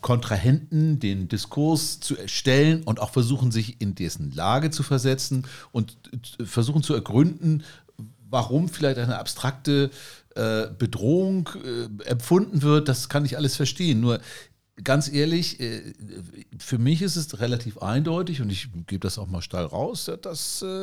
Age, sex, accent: 50-69, male, German